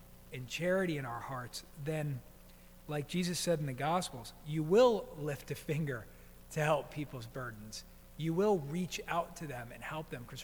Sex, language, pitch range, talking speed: male, English, 115-160 Hz, 180 wpm